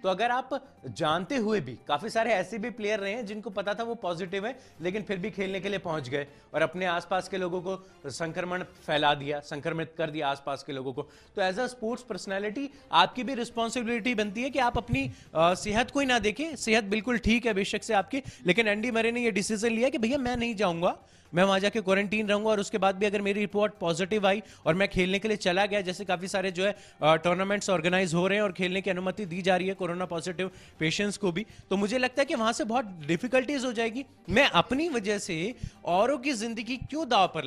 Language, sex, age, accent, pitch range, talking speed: Hindi, male, 30-49, native, 185-235 Hz, 190 wpm